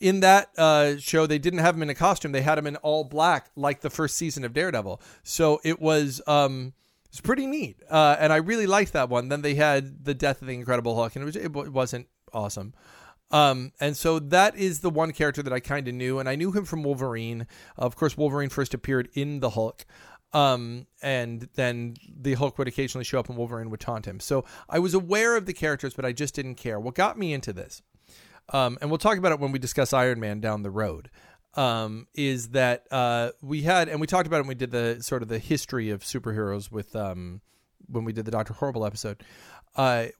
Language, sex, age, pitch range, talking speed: English, male, 40-59, 125-155 Hz, 230 wpm